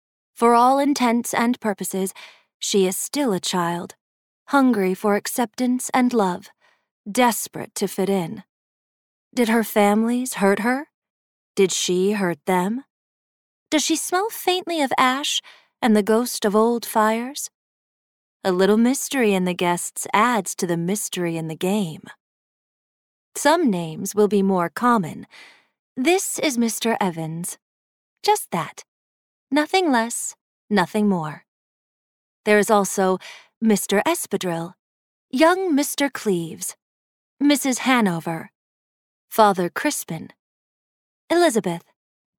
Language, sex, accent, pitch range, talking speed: English, female, American, 195-265 Hz, 115 wpm